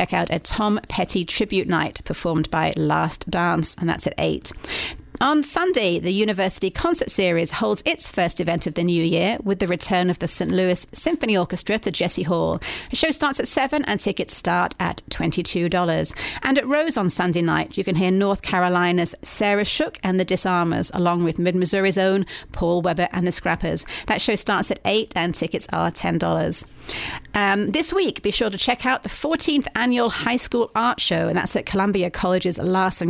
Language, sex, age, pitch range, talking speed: English, female, 40-59, 175-225 Hz, 190 wpm